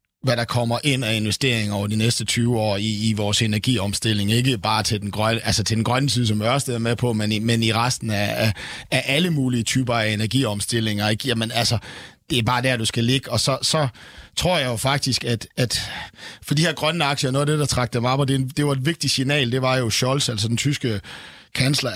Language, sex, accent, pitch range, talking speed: Danish, male, native, 120-150 Hz, 245 wpm